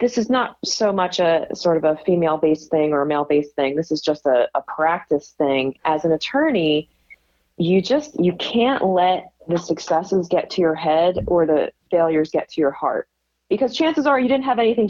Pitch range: 160-210 Hz